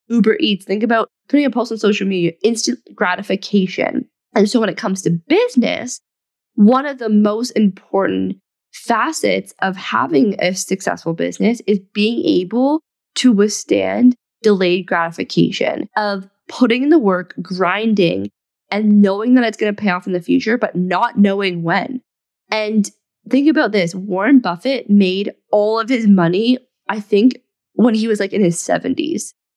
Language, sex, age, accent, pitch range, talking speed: English, female, 20-39, American, 190-245 Hz, 160 wpm